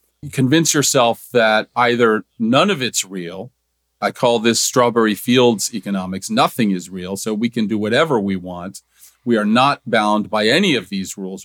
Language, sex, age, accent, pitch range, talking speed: English, male, 40-59, American, 95-130 Hz, 175 wpm